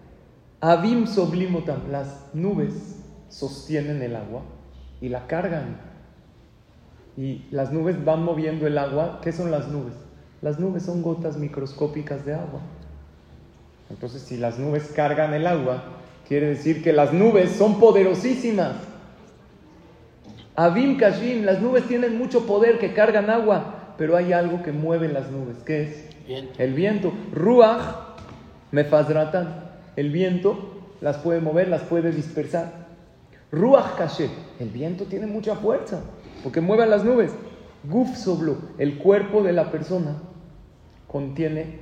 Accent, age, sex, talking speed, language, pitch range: Mexican, 40-59, male, 130 wpm, Spanish, 145-200 Hz